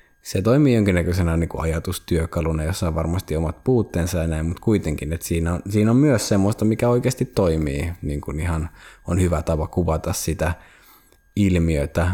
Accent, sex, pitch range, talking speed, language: native, male, 80-95 Hz, 170 wpm, Finnish